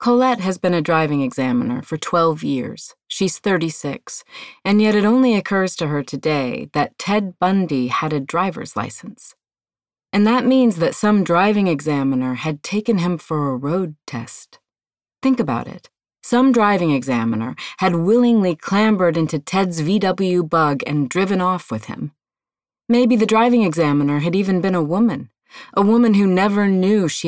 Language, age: English, 30-49